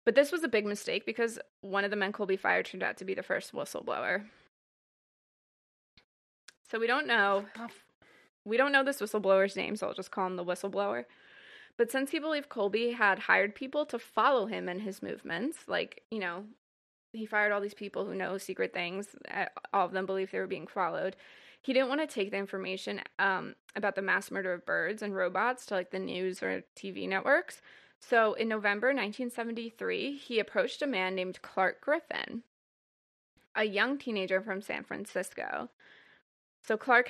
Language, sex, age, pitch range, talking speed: English, female, 20-39, 190-255 Hz, 185 wpm